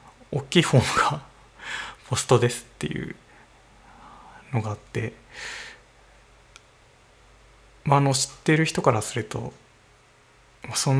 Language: Japanese